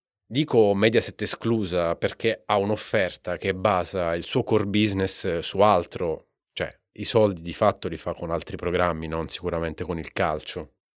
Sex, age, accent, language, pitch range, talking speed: male, 30-49, native, Italian, 95-125 Hz, 160 wpm